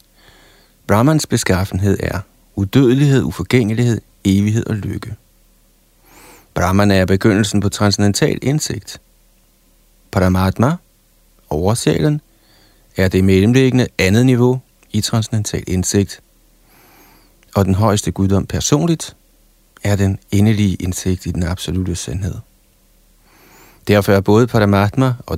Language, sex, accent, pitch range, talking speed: Danish, male, native, 95-110 Hz, 100 wpm